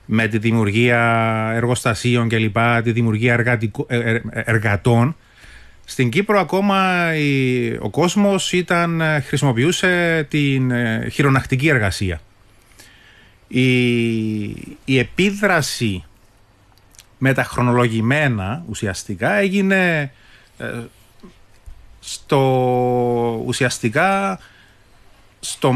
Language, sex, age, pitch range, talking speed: Greek, male, 30-49, 110-140 Hz, 75 wpm